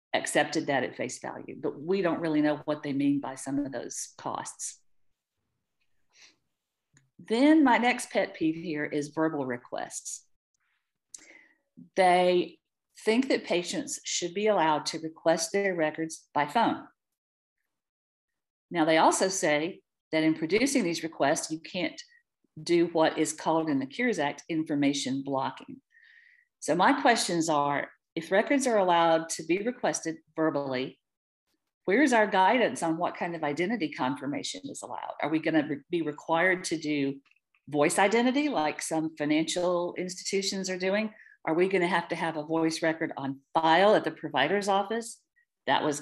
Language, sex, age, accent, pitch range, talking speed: English, female, 50-69, American, 155-210 Hz, 150 wpm